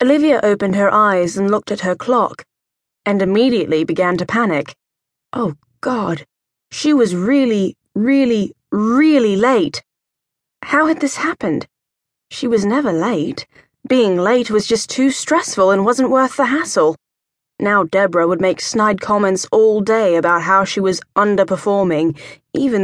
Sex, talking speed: female, 145 wpm